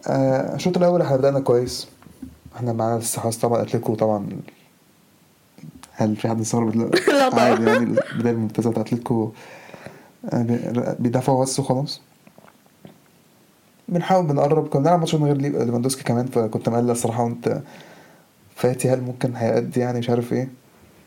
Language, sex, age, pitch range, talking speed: Arabic, male, 20-39, 120-140 Hz, 135 wpm